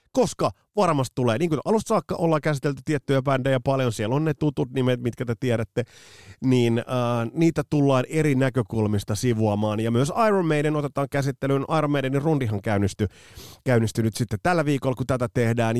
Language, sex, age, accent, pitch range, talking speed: Finnish, male, 30-49, native, 105-150 Hz, 170 wpm